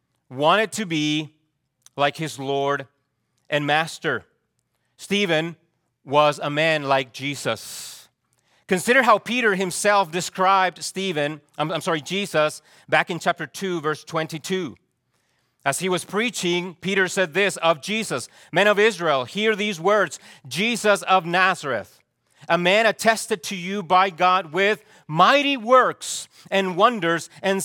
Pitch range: 155-200 Hz